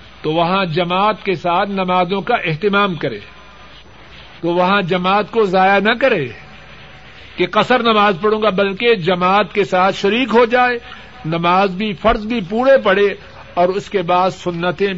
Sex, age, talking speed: male, 50-69, 155 wpm